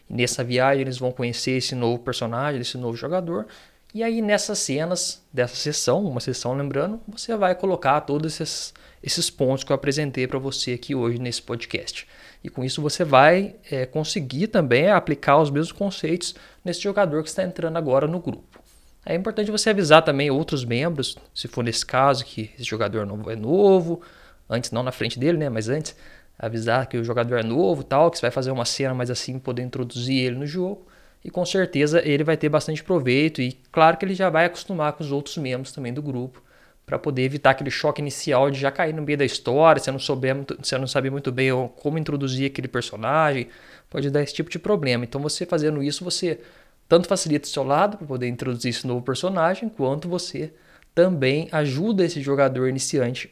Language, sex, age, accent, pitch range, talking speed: Portuguese, male, 20-39, Brazilian, 125-165 Hz, 195 wpm